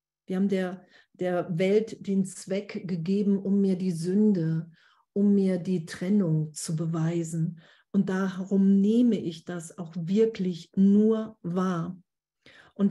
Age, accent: 50-69, German